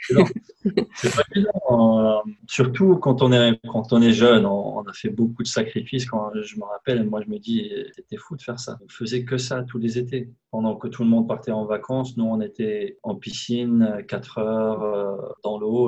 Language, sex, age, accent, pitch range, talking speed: French, male, 20-39, French, 110-170 Hz, 210 wpm